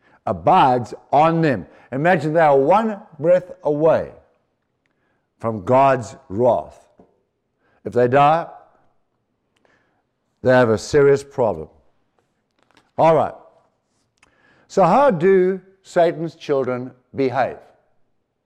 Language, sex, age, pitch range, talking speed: English, male, 60-79, 135-185 Hz, 90 wpm